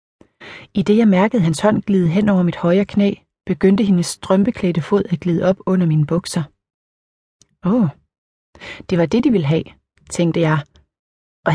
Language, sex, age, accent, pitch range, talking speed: Danish, female, 30-49, native, 165-200 Hz, 170 wpm